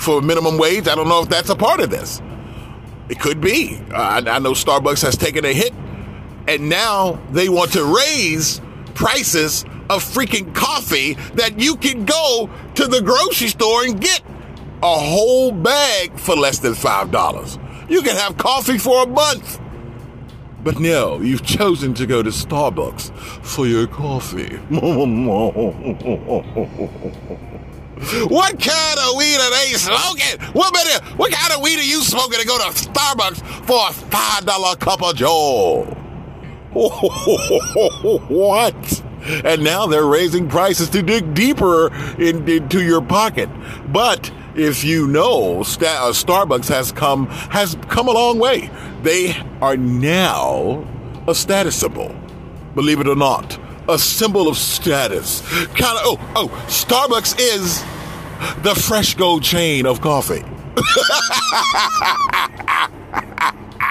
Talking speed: 130 wpm